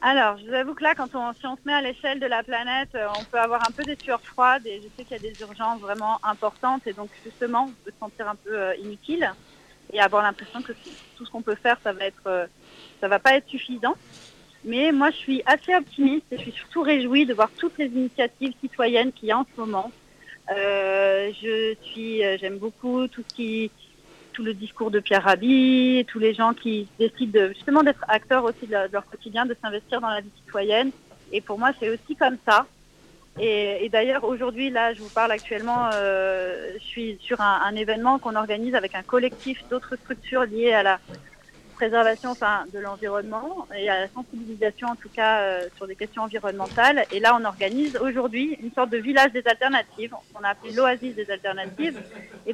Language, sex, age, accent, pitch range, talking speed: French, female, 30-49, French, 210-255 Hz, 205 wpm